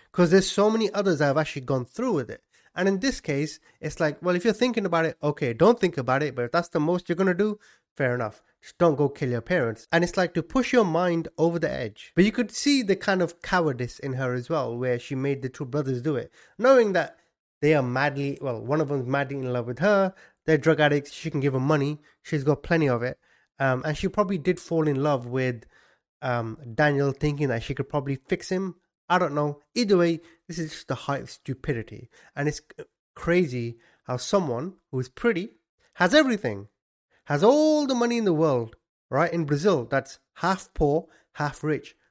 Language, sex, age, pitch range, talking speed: English, male, 30-49, 130-175 Hz, 225 wpm